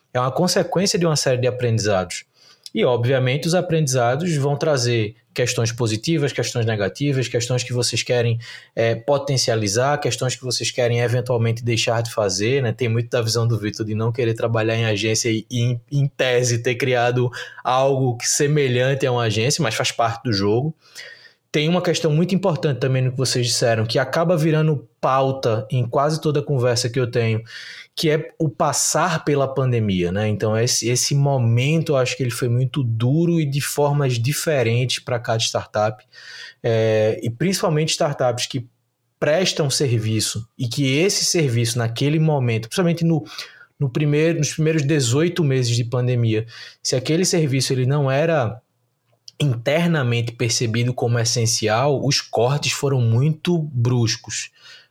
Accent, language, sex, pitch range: Brazilian, Portuguese, male, 120-145 Hz